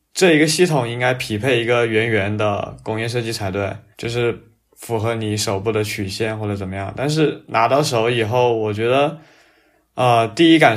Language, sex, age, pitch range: Chinese, male, 20-39, 110-135 Hz